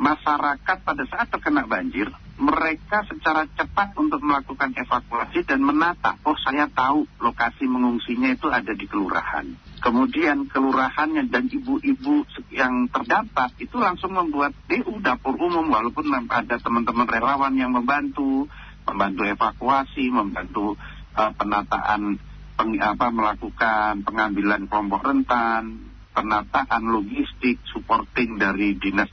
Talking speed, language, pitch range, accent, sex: 115 wpm, Indonesian, 105-145 Hz, native, male